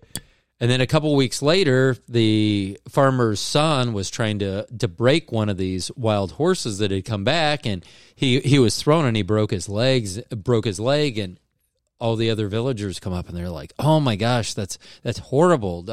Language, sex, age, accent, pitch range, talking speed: English, male, 30-49, American, 110-140 Hz, 195 wpm